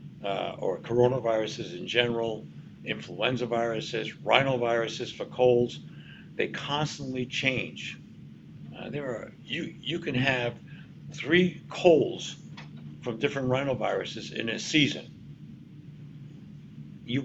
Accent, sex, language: American, male, English